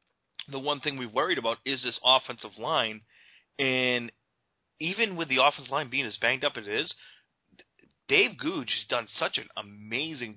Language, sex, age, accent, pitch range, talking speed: English, male, 30-49, American, 110-145 Hz, 175 wpm